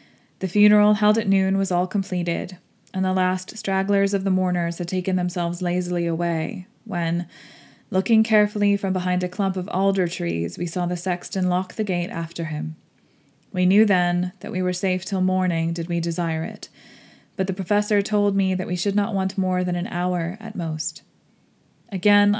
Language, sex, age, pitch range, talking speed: English, female, 20-39, 180-210 Hz, 185 wpm